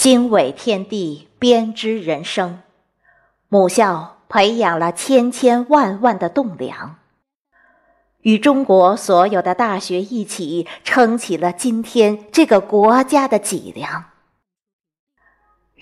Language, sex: Chinese, female